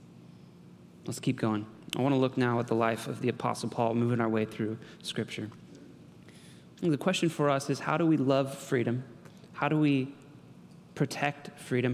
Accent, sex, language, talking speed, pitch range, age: American, male, English, 175 wpm, 115-140 Hz, 30-49